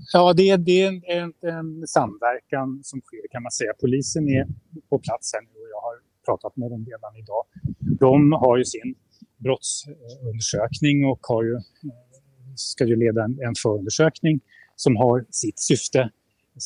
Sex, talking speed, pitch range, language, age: male, 160 wpm, 115-145 Hz, Swedish, 30-49